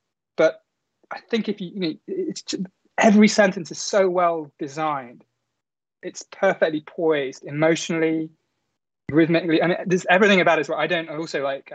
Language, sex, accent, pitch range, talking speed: English, male, British, 145-180 Hz, 170 wpm